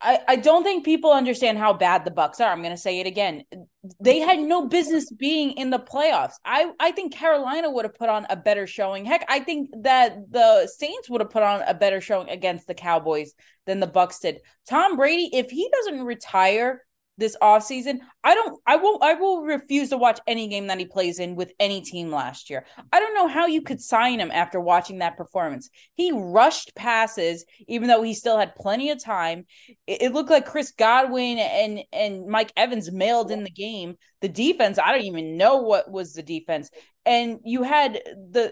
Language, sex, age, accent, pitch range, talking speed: English, female, 20-39, American, 195-280 Hz, 210 wpm